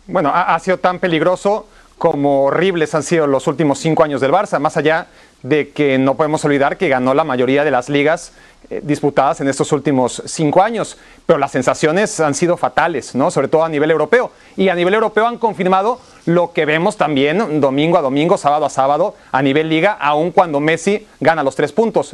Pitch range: 150-195 Hz